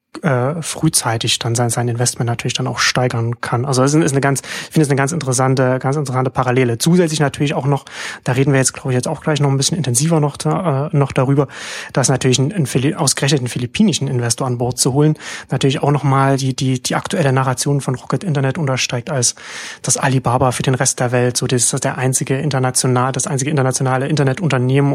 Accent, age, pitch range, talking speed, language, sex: German, 30-49, 125-140 Hz, 200 wpm, German, male